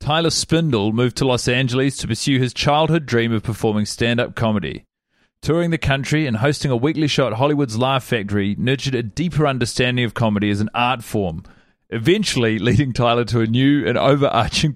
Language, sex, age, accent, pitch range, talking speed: English, male, 30-49, Australian, 115-145 Hz, 185 wpm